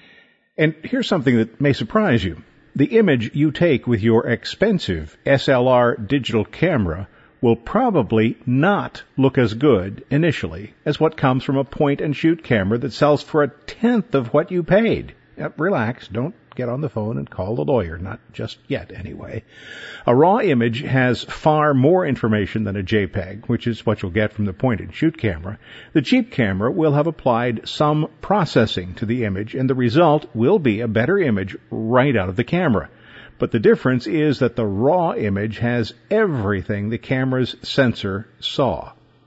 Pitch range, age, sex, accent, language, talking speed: 110-150 Hz, 50-69, male, American, English, 170 wpm